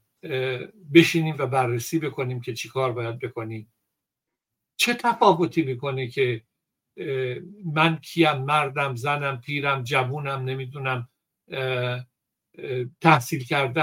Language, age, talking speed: Persian, 60-79, 100 wpm